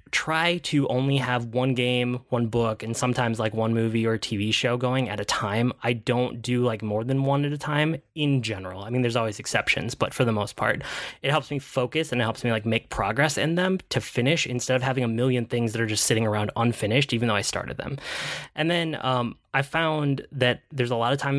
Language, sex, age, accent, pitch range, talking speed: English, male, 20-39, American, 110-135 Hz, 240 wpm